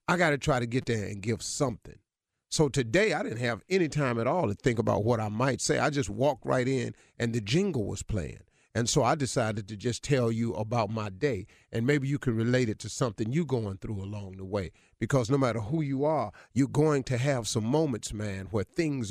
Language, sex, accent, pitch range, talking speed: English, male, American, 110-145 Hz, 235 wpm